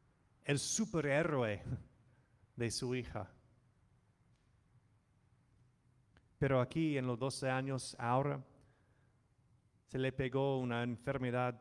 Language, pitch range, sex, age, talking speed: English, 110-125 Hz, male, 30-49, 90 wpm